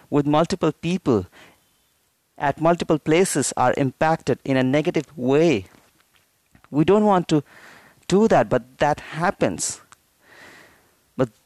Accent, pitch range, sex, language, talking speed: Indian, 145-205 Hz, male, English, 115 wpm